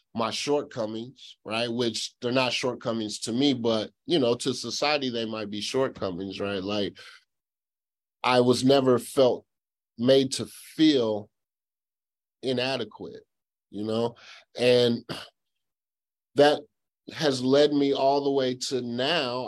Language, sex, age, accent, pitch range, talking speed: English, male, 30-49, American, 115-135 Hz, 125 wpm